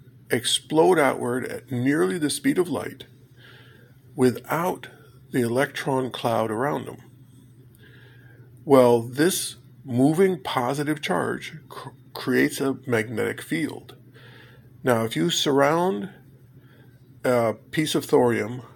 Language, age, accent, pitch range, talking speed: English, 50-69, American, 120-130 Hz, 100 wpm